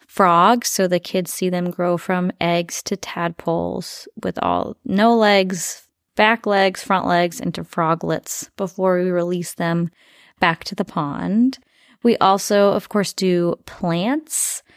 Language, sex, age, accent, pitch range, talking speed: English, female, 20-39, American, 175-230 Hz, 140 wpm